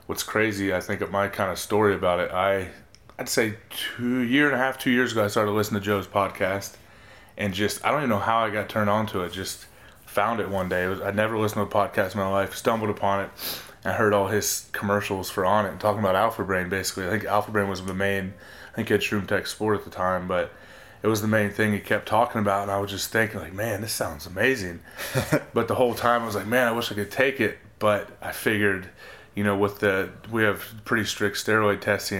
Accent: American